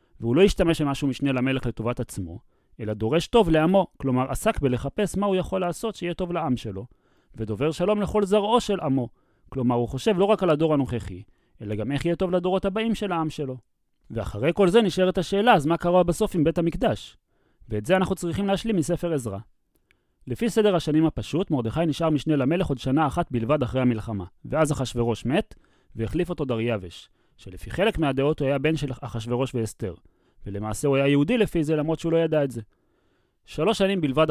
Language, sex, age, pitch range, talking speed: Hebrew, male, 30-49, 120-170 Hz, 190 wpm